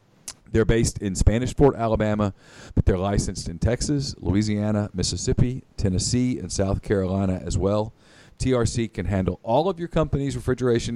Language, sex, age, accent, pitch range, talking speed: English, male, 40-59, American, 95-120 Hz, 150 wpm